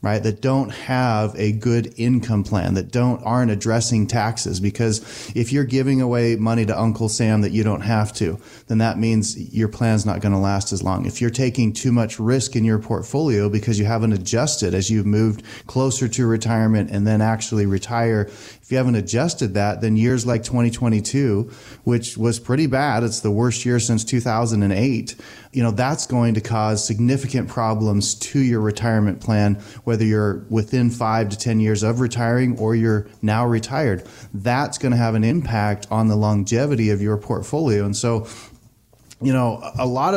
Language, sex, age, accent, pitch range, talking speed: English, male, 30-49, American, 105-125 Hz, 180 wpm